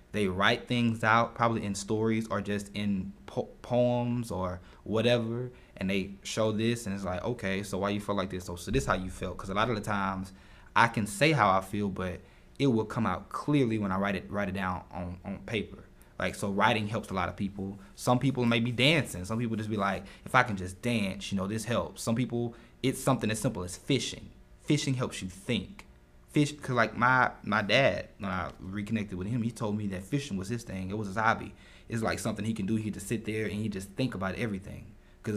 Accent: American